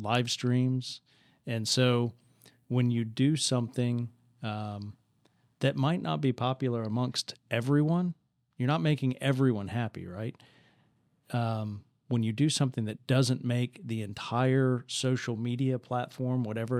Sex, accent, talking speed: male, American, 125 wpm